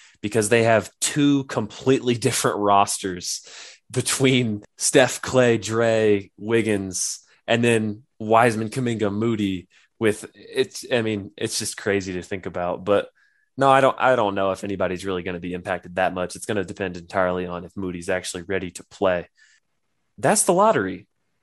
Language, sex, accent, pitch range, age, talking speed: English, male, American, 95-120 Hz, 20-39, 160 wpm